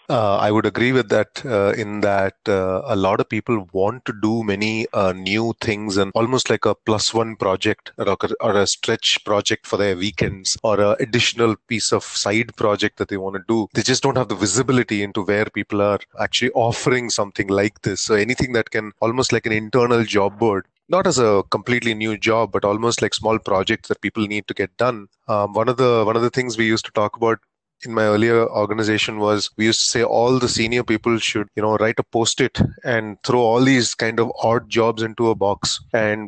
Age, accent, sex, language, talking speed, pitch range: 30-49, Indian, male, English, 225 wpm, 105-120 Hz